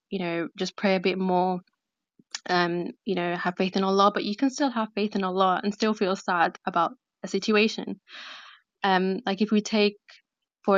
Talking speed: 195 wpm